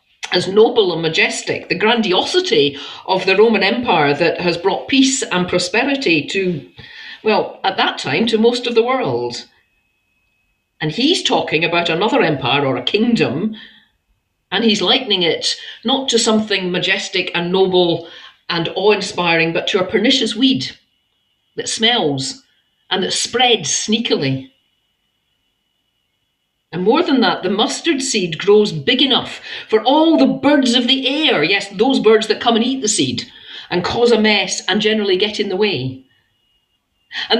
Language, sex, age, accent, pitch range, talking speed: English, female, 50-69, British, 180-255 Hz, 150 wpm